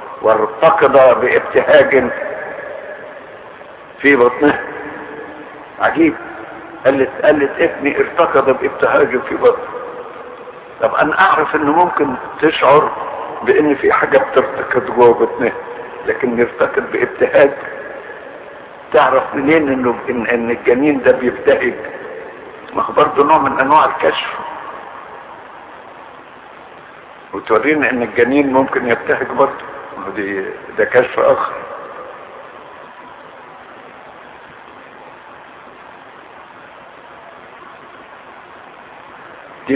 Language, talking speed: Arabic, 75 wpm